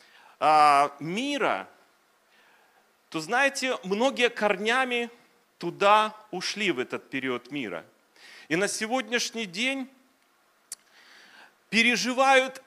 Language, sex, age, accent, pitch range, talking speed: Russian, male, 40-59, native, 225-275 Hz, 75 wpm